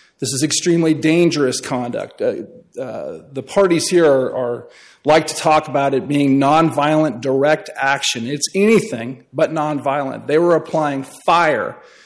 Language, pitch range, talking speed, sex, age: English, 135-185 Hz, 135 wpm, male, 40-59